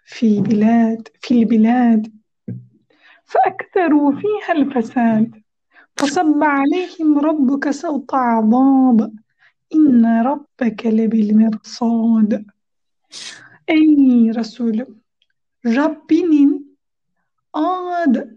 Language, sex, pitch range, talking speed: Turkish, female, 230-300 Hz, 50 wpm